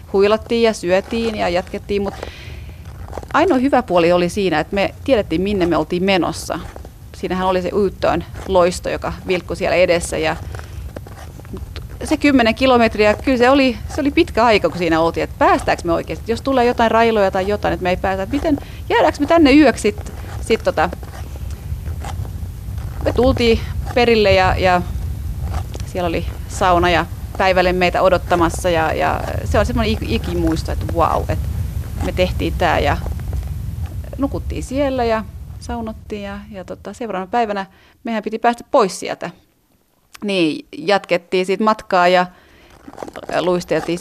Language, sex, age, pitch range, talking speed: Finnish, female, 30-49, 165-220 Hz, 150 wpm